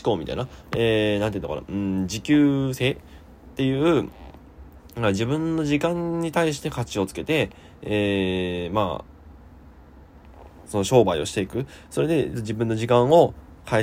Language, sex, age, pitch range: Japanese, male, 20-39, 95-135 Hz